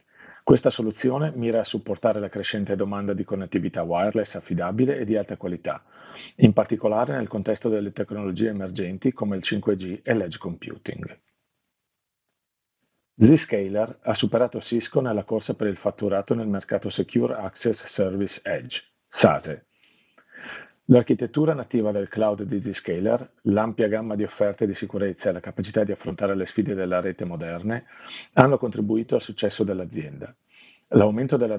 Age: 40-59